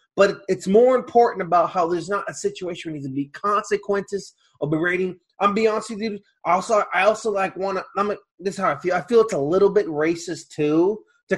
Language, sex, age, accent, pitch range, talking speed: English, male, 30-49, American, 165-210 Hz, 220 wpm